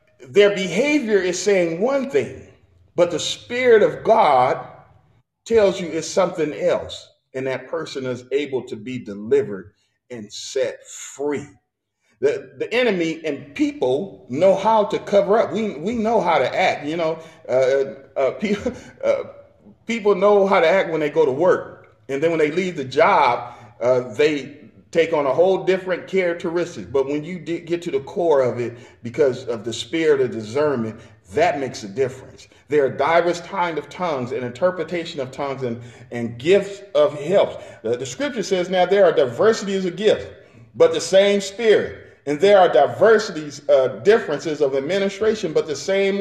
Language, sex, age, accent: English, male, 40-59, American